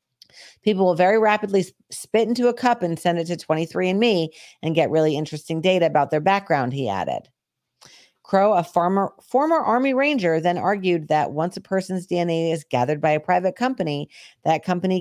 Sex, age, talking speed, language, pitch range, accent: female, 40-59, 175 wpm, English, 140-185 Hz, American